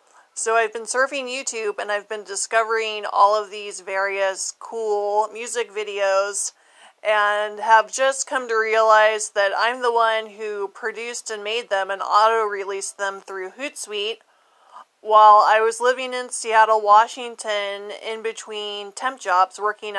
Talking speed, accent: 145 wpm, American